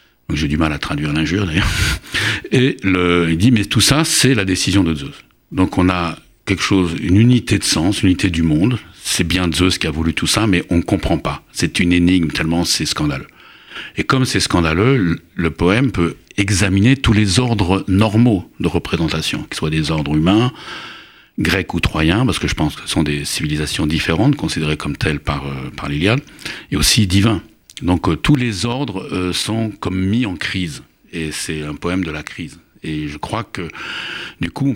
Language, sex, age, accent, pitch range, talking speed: French, male, 60-79, French, 80-100 Hz, 205 wpm